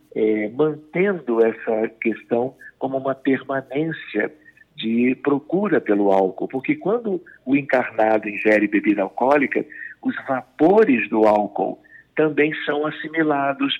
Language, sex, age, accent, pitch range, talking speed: Portuguese, male, 60-79, Brazilian, 115-160 Hz, 110 wpm